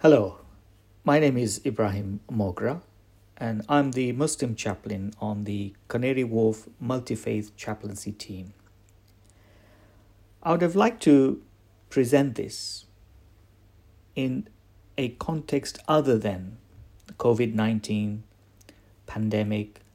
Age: 50-69